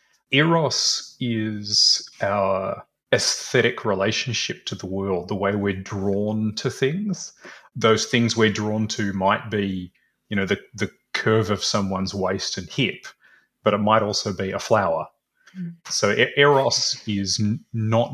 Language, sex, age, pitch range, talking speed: English, male, 30-49, 100-125 Hz, 140 wpm